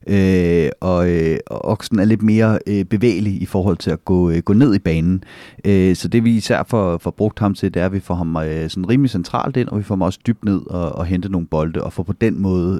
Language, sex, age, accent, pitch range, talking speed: Danish, male, 30-49, native, 90-100 Hz, 265 wpm